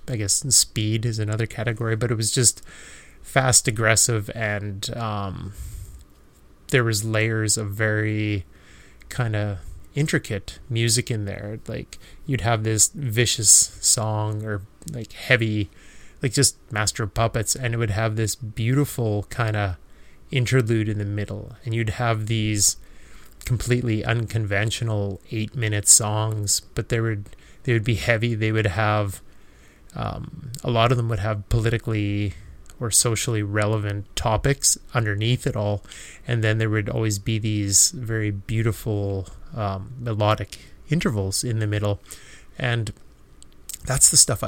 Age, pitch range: 20-39, 100-120 Hz